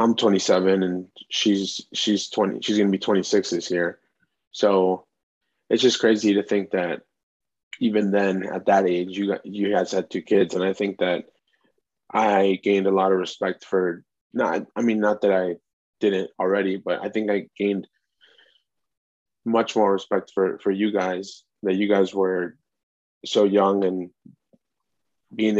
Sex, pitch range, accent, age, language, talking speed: male, 95-100 Hz, American, 20-39, English, 160 wpm